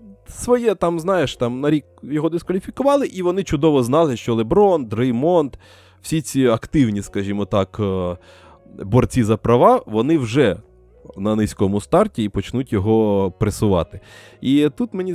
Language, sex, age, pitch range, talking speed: Ukrainian, male, 20-39, 95-130 Hz, 140 wpm